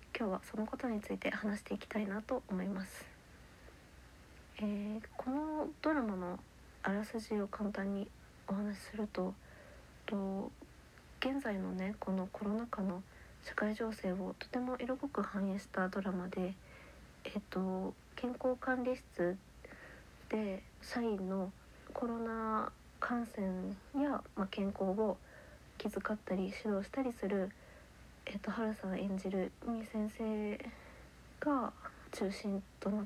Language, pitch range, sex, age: Japanese, 185-215 Hz, female, 40-59